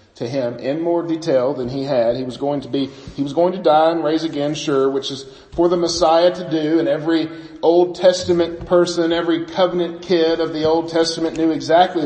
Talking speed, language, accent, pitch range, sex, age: 215 wpm, English, American, 125-175 Hz, male, 40-59